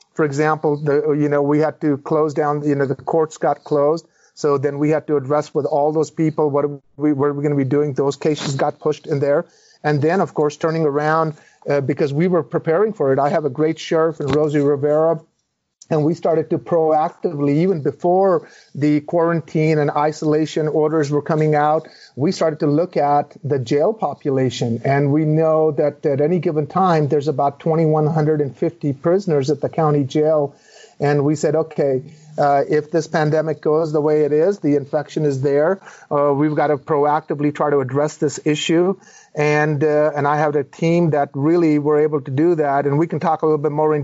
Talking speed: 205 wpm